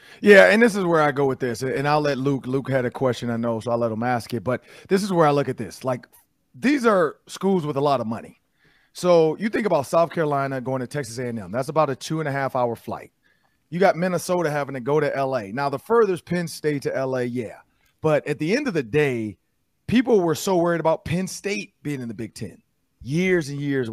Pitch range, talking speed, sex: 125-165 Hz, 240 wpm, male